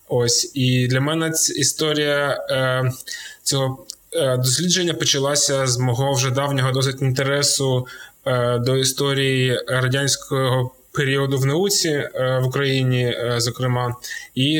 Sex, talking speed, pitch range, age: male, 105 wpm, 120-140 Hz, 20-39